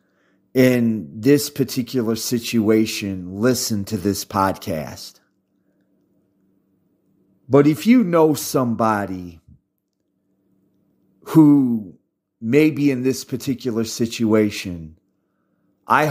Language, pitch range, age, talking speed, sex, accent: English, 95-135 Hz, 30-49, 80 wpm, male, American